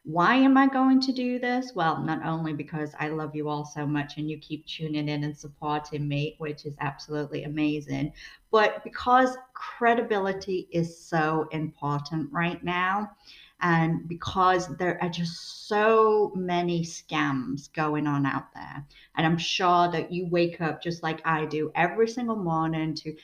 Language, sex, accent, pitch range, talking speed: English, female, American, 155-190 Hz, 165 wpm